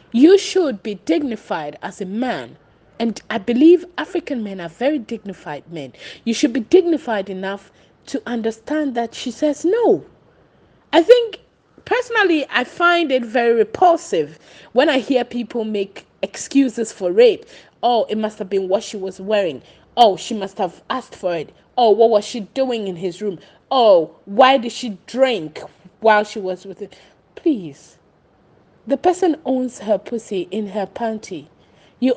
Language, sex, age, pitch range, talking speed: English, female, 20-39, 200-275 Hz, 165 wpm